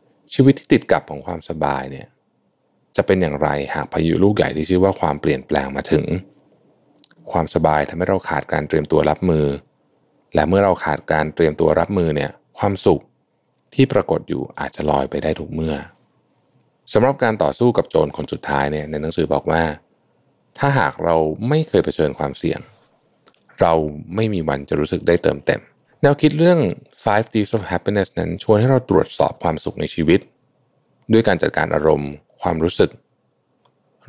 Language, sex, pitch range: Thai, male, 75-100 Hz